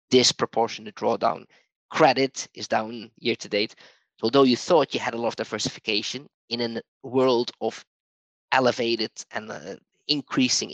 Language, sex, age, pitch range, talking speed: English, male, 20-39, 110-130 Hz, 140 wpm